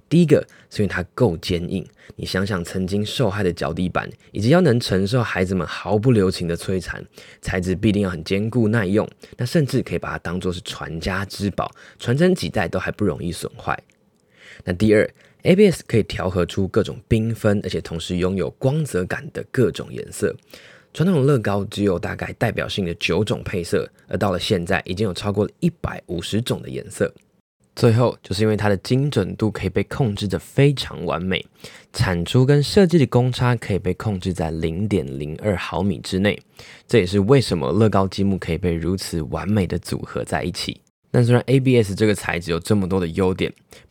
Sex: male